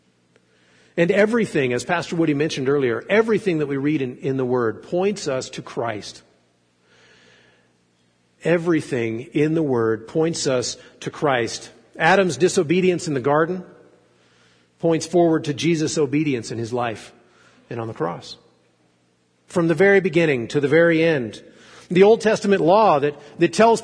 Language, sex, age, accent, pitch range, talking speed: English, male, 50-69, American, 120-185 Hz, 150 wpm